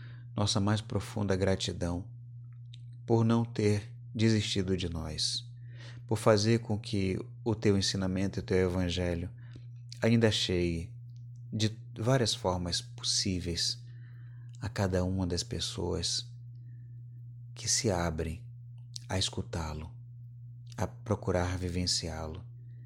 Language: Portuguese